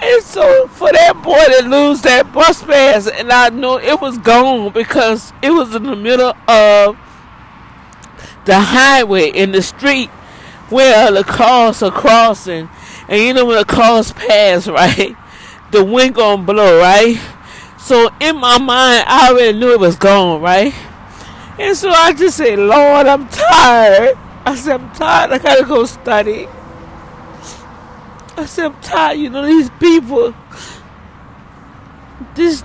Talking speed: 155 wpm